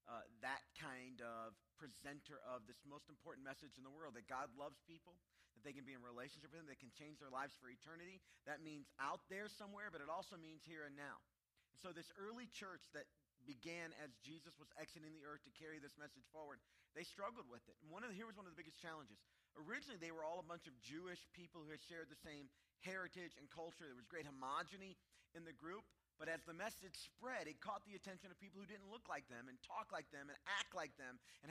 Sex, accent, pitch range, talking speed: male, American, 145-195 Hz, 240 wpm